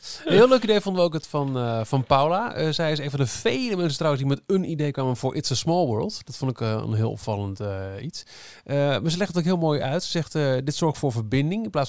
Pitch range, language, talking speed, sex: 115-155 Hz, Dutch, 300 wpm, male